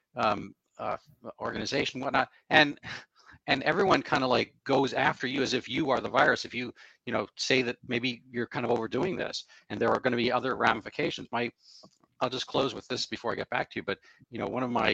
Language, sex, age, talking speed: English, male, 40-59, 230 wpm